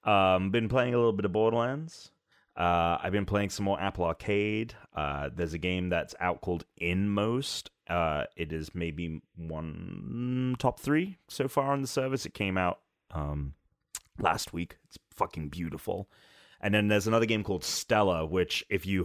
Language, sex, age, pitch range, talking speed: English, male, 30-49, 85-105 Hz, 175 wpm